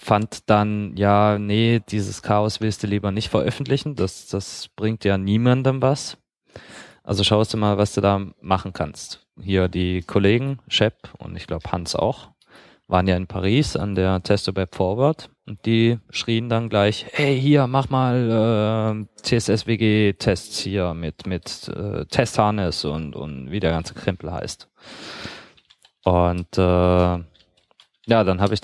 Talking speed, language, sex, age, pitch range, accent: 150 wpm, German, male, 20-39, 95-115 Hz, German